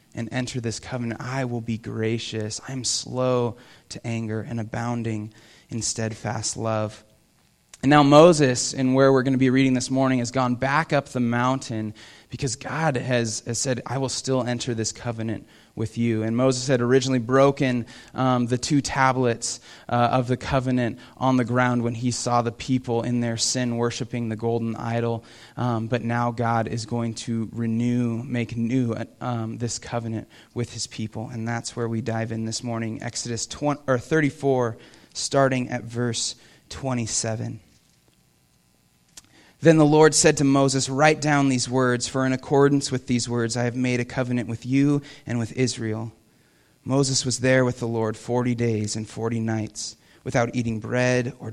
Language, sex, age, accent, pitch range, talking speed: English, male, 20-39, American, 115-130 Hz, 175 wpm